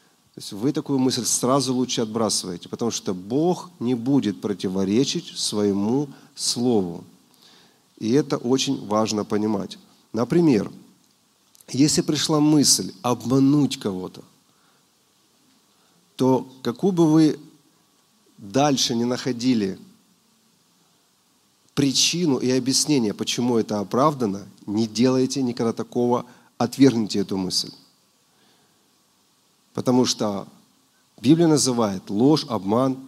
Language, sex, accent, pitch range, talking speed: Russian, male, native, 115-150 Hz, 95 wpm